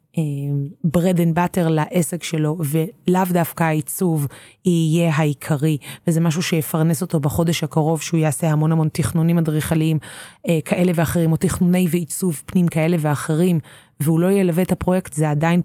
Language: Hebrew